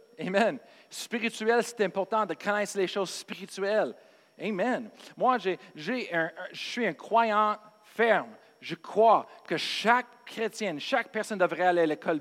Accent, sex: Canadian, male